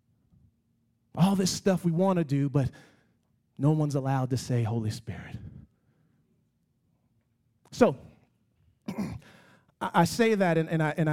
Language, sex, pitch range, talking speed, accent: English, male, 135-200 Hz, 120 wpm, American